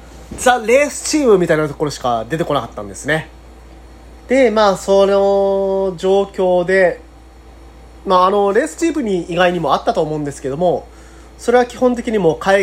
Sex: male